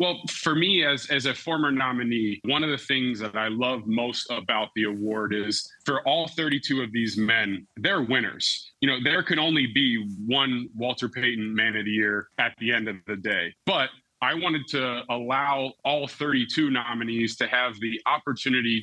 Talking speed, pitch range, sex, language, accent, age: 190 wpm, 120-140 Hz, male, English, American, 30-49